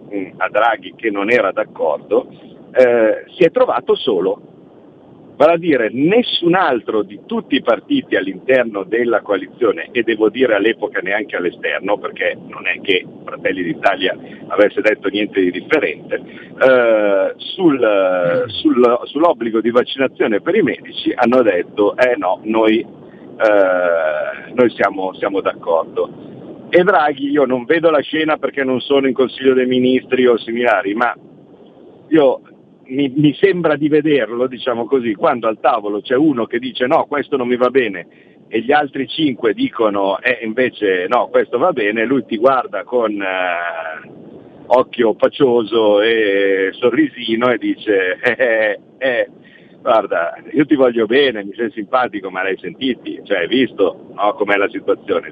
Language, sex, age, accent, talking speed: Italian, male, 50-69, native, 150 wpm